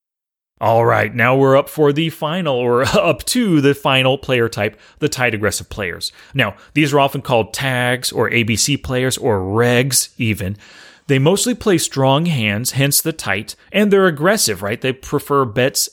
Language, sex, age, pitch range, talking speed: English, male, 30-49, 110-155 Hz, 175 wpm